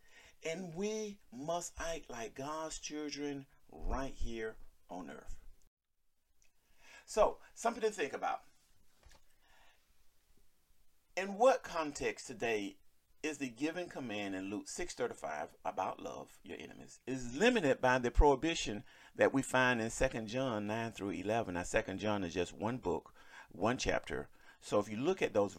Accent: American